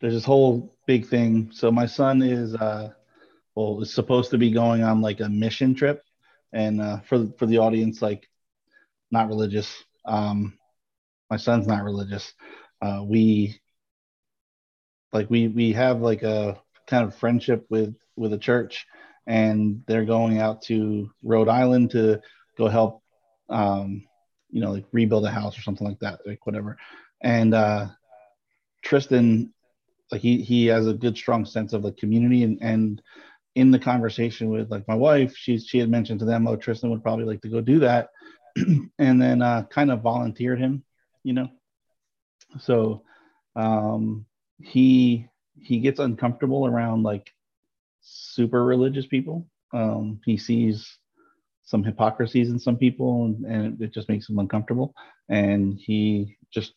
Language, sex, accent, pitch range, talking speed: English, male, American, 110-120 Hz, 155 wpm